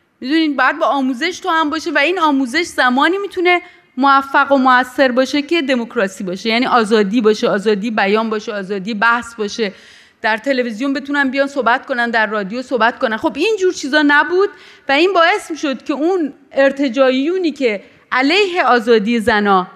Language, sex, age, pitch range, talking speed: Persian, female, 30-49, 235-320 Hz, 165 wpm